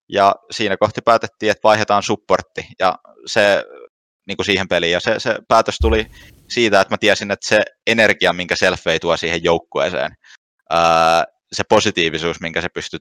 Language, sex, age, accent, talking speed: Finnish, male, 20-39, native, 165 wpm